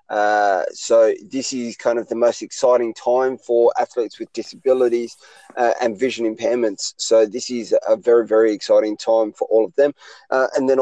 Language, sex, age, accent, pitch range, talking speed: English, male, 20-39, Australian, 115-130 Hz, 185 wpm